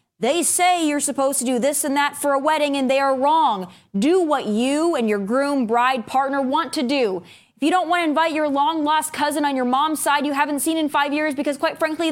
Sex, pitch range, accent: female, 220-315 Hz, American